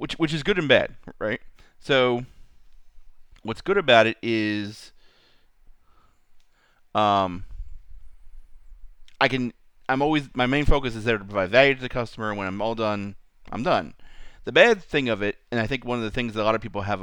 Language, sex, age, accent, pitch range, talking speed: English, male, 30-49, American, 100-125 Hz, 190 wpm